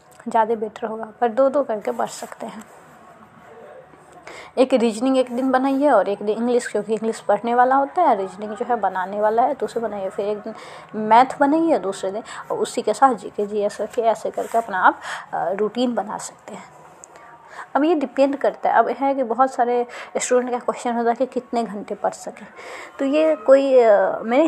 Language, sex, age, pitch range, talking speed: Hindi, female, 20-39, 220-265 Hz, 200 wpm